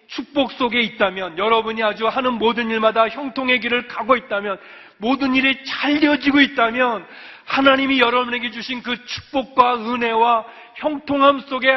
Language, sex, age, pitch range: Korean, male, 40-59, 200-260 Hz